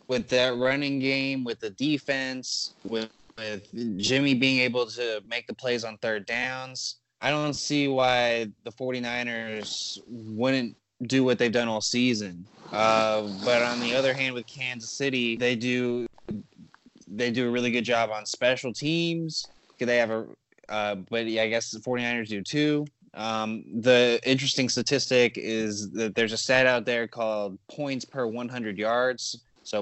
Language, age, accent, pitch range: English, 20-39, American, 110-125 Hz